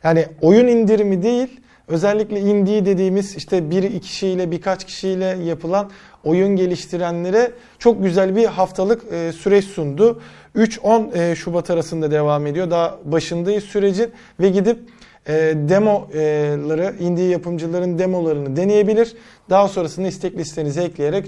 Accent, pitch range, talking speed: native, 165-195 Hz, 115 wpm